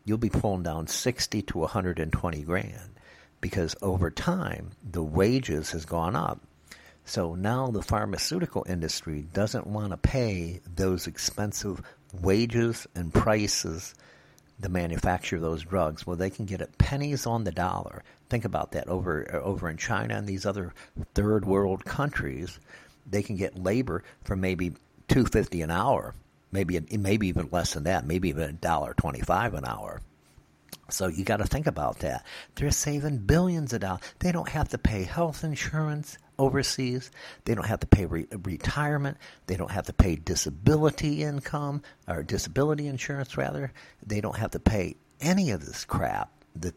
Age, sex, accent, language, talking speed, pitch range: 60-79, male, American, English, 160 wpm, 90-120 Hz